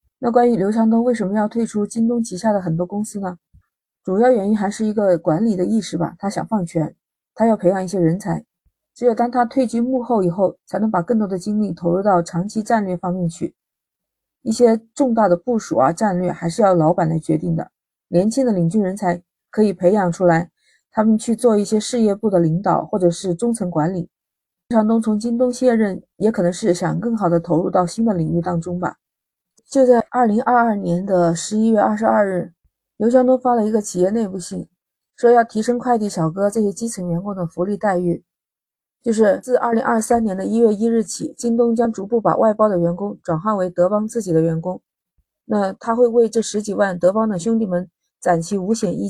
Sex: female